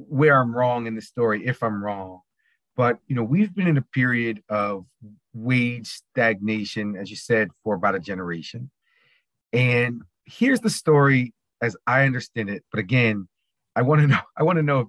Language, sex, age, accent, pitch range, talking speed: English, male, 30-49, American, 105-130 Hz, 185 wpm